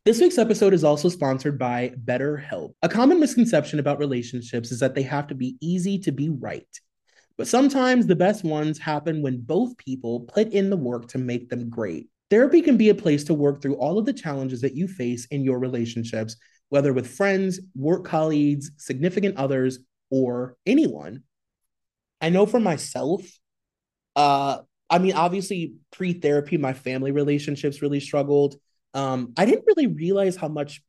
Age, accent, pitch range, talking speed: 30-49, American, 130-195 Hz, 170 wpm